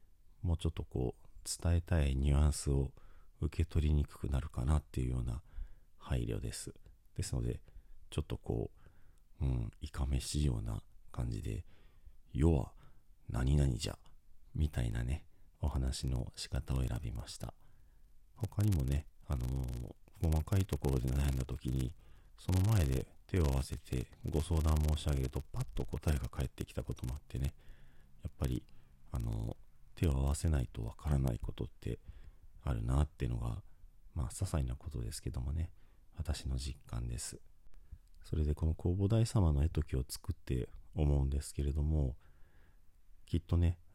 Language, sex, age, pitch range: Japanese, male, 40-59, 65-85 Hz